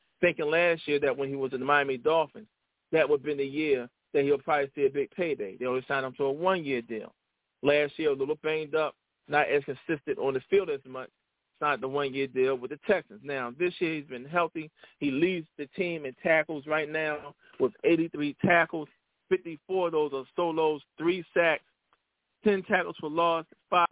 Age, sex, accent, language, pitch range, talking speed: 40-59, male, American, English, 135-175 Hz, 205 wpm